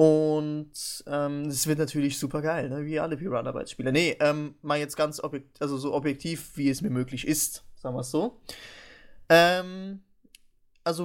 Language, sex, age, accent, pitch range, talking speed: English, male, 20-39, German, 135-165 Hz, 180 wpm